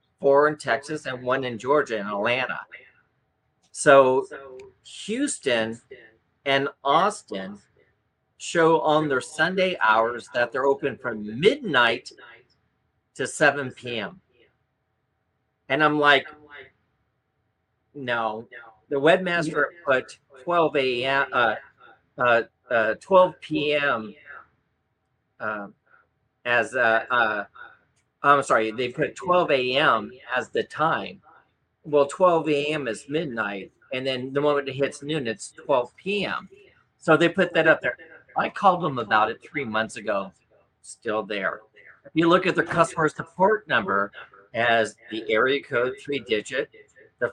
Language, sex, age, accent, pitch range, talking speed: English, male, 50-69, American, 125-170 Hz, 125 wpm